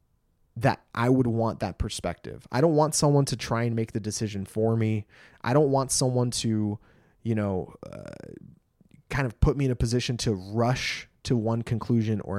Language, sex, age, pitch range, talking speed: English, male, 20-39, 110-125 Hz, 190 wpm